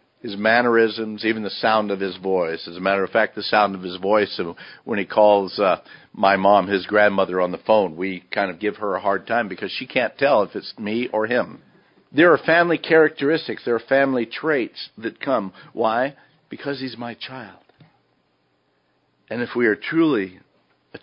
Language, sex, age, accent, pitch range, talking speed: English, male, 50-69, American, 90-115 Hz, 190 wpm